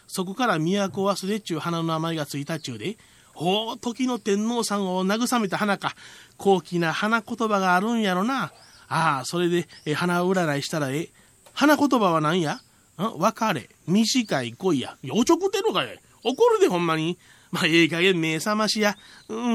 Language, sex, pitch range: Japanese, male, 175-260 Hz